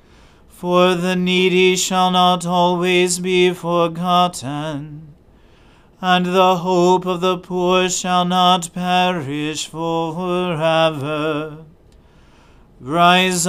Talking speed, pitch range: 85 wpm, 160-180 Hz